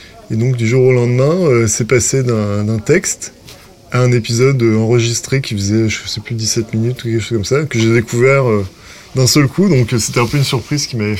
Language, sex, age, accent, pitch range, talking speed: French, male, 20-39, French, 105-125 Hz, 235 wpm